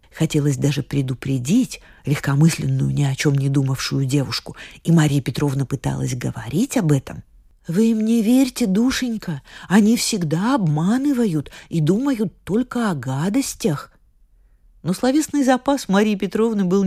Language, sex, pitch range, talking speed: Russian, female, 140-200 Hz, 130 wpm